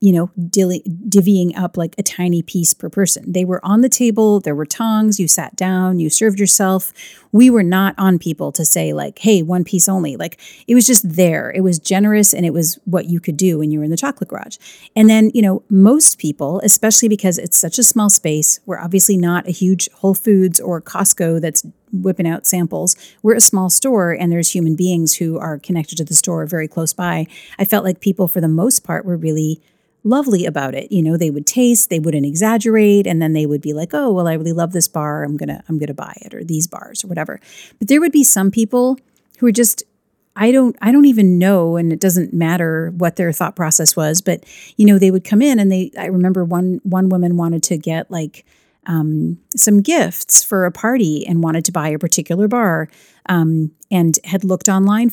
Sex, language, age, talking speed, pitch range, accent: female, English, 40-59, 225 wpm, 165-205 Hz, American